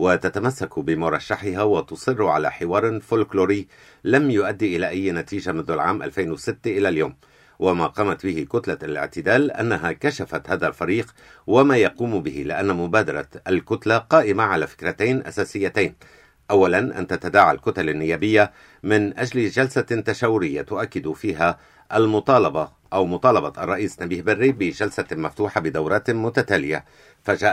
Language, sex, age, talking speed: Arabic, male, 60-79, 125 wpm